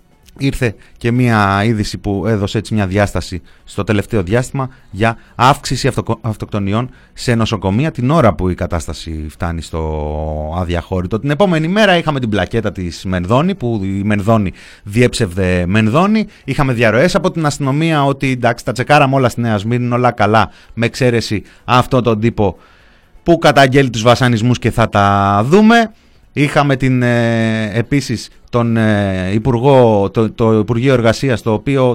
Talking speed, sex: 150 wpm, male